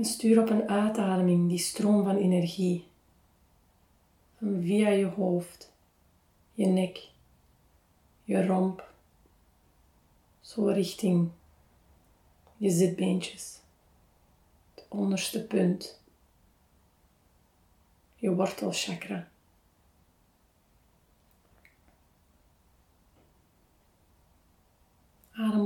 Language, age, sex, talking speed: Dutch, 30-49, female, 60 wpm